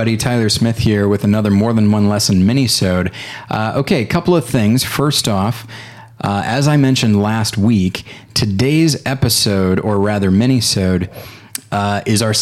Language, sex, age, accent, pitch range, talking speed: English, male, 30-49, American, 100-130 Hz, 155 wpm